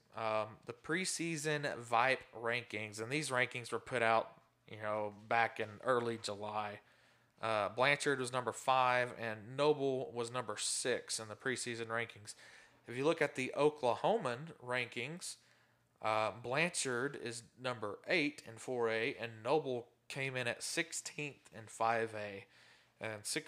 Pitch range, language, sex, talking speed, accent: 115-135 Hz, English, male, 140 wpm, American